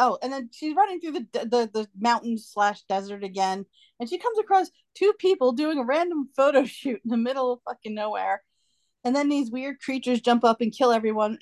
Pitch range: 200-265 Hz